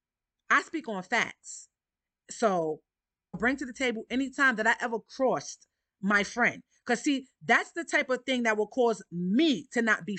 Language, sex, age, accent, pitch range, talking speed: English, female, 30-49, American, 185-240 Hz, 185 wpm